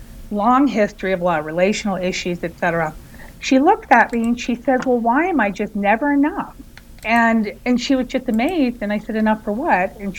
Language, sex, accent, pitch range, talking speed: English, female, American, 180-230 Hz, 210 wpm